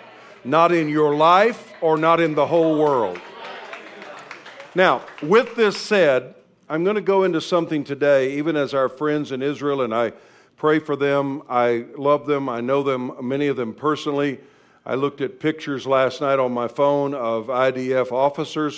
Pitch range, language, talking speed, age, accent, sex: 130-155 Hz, English, 175 wpm, 50-69, American, male